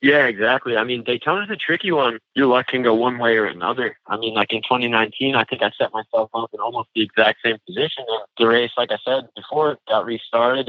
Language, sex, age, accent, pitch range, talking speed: English, male, 20-39, American, 105-120 Hz, 230 wpm